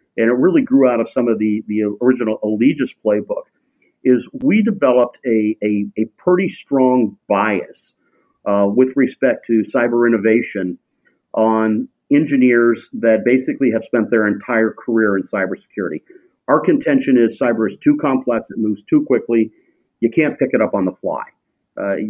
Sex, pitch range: male, 110-130 Hz